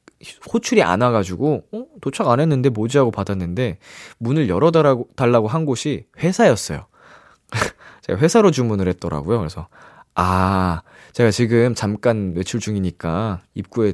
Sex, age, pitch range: male, 20-39, 100-165 Hz